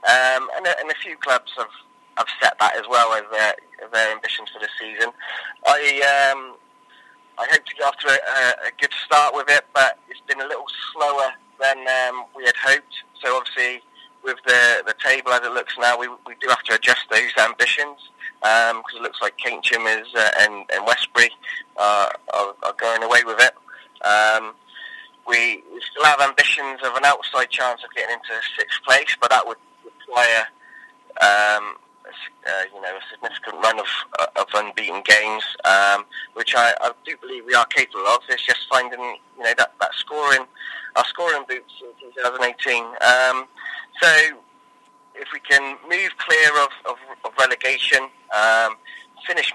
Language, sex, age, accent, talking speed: English, male, 20-39, British, 180 wpm